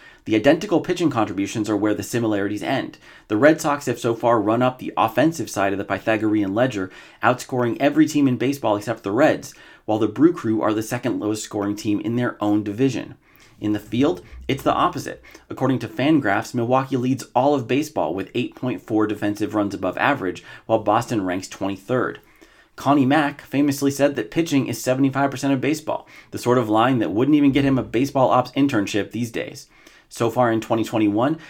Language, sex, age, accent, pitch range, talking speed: English, male, 30-49, American, 105-140 Hz, 190 wpm